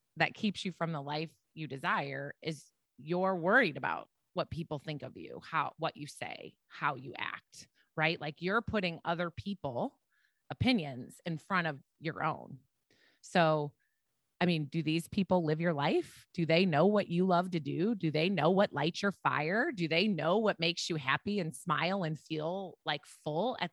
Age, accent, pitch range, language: 30-49, American, 155-200 Hz, English